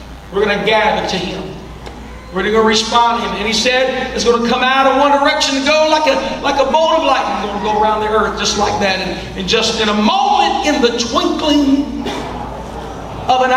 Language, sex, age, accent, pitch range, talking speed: English, male, 40-59, American, 230-270 Hz, 235 wpm